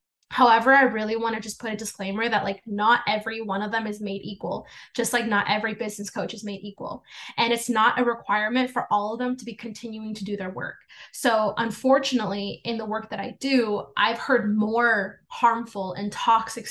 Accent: American